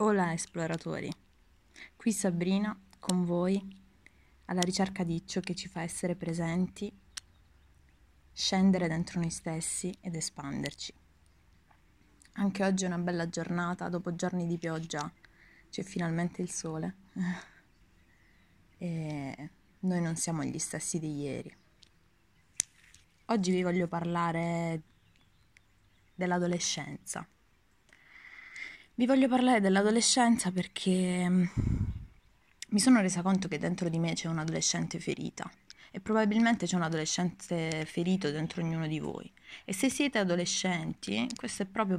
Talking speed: 115 wpm